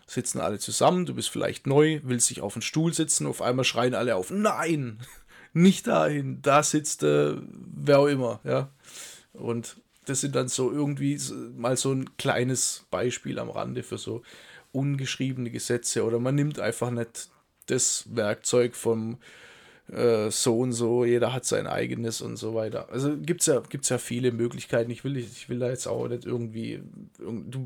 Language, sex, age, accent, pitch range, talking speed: German, male, 20-39, German, 115-140 Hz, 175 wpm